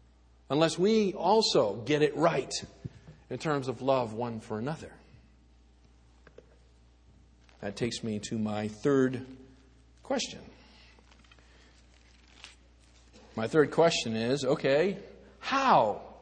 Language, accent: English, American